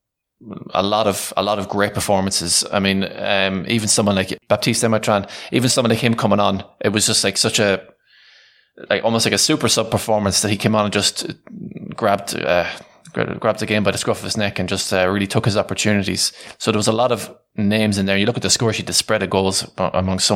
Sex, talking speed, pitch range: male, 235 wpm, 95-110 Hz